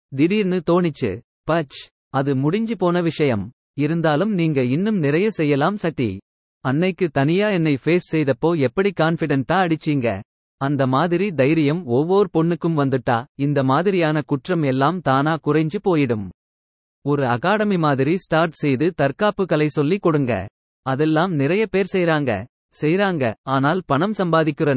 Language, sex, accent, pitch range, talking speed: Tamil, male, native, 140-180 Hz, 125 wpm